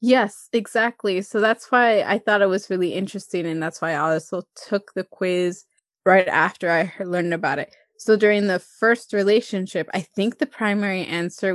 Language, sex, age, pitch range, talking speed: English, female, 20-39, 180-215 Hz, 180 wpm